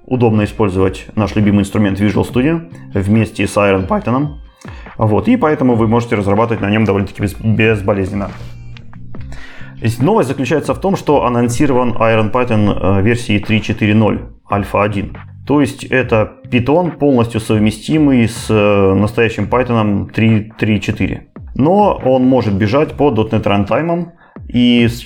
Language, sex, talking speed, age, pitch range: Russian, male, 120 wpm, 30-49, 100-125 Hz